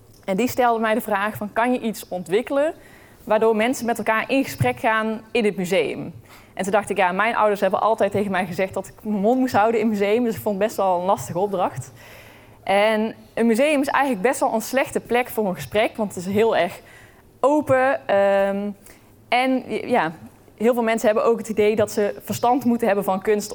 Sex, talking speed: female, 220 wpm